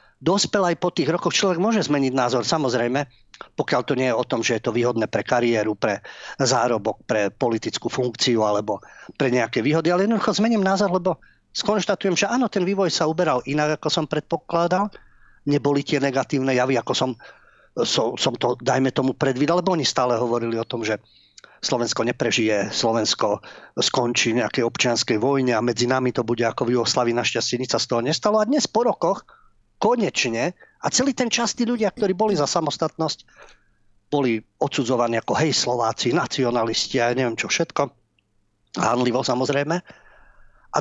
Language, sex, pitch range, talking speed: Slovak, male, 125-175 Hz, 165 wpm